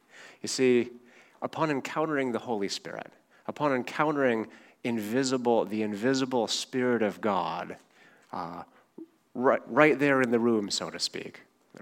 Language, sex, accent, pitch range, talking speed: English, male, American, 105-130 Hz, 130 wpm